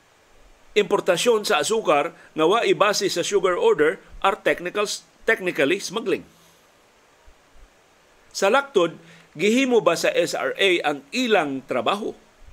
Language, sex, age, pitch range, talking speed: Filipino, male, 50-69, 140-190 Hz, 100 wpm